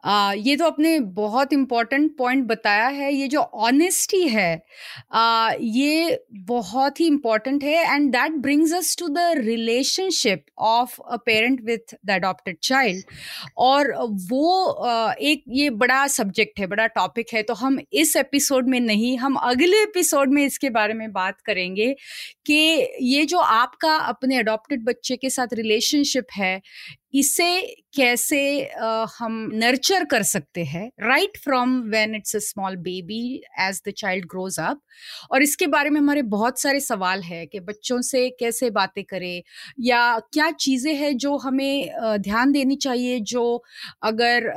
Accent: native